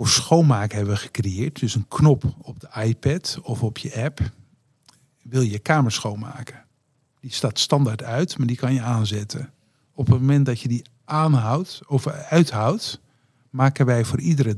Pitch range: 115-140 Hz